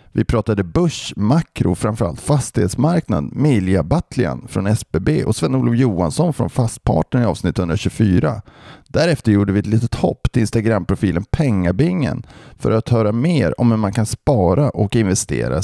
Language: Swedish